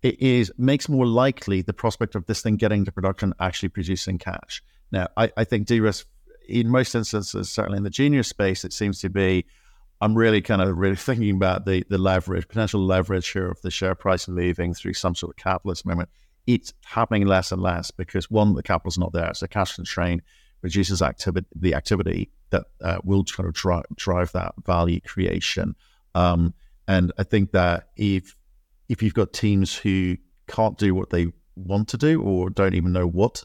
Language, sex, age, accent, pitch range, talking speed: English, male, 50-69, British, 95-120 Hz, 195 wpm